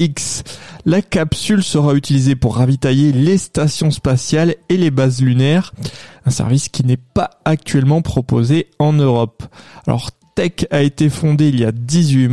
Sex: male